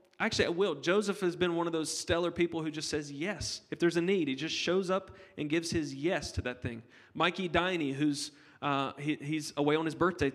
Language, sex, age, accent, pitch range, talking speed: English, male, 30-49, American, 150-205 Hz, 230 wpm